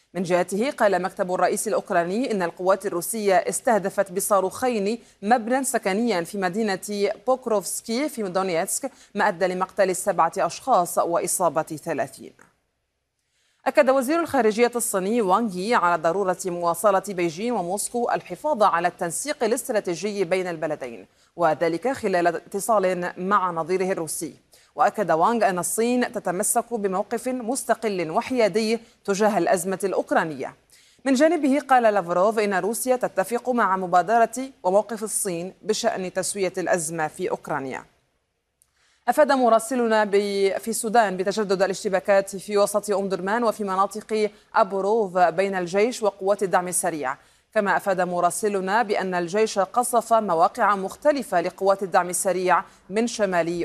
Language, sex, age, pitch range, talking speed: Arabic, female, 30-49, 185-230 Hz, 115 wpm